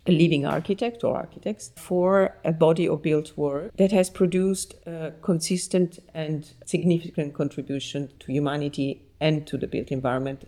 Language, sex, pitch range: English, female, 145-185 Hz